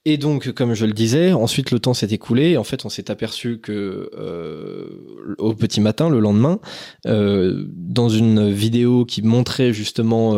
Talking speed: 180 wpm